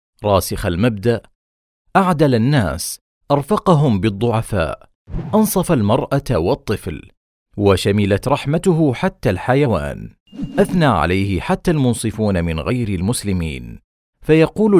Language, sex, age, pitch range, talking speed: Arabic, male, 40-59, 100-150 Hz, 85 wpm